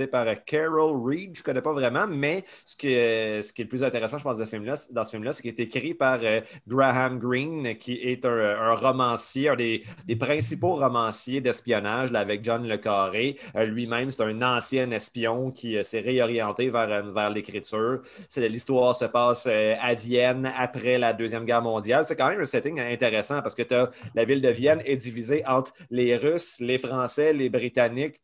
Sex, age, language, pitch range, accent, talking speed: male, 30-49, French, 110-130 Hz, Canadian, 200 wpm